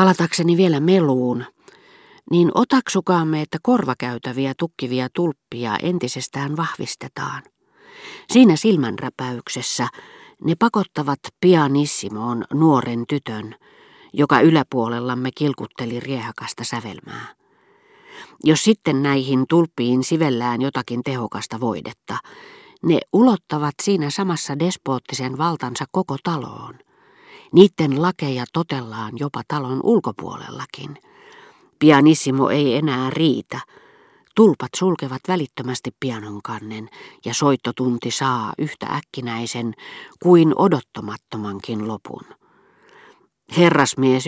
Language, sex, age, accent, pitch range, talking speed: Finnish, female, 40-59, native, 125-170 Hz, 85 wpm